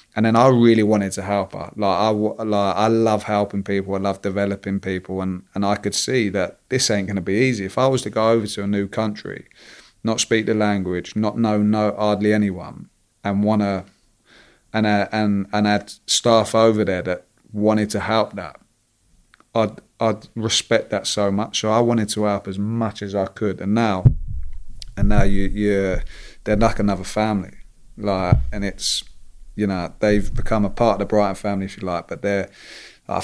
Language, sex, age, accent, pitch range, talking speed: English, male, 30-49, British, 95-110 Hz, 200 wpm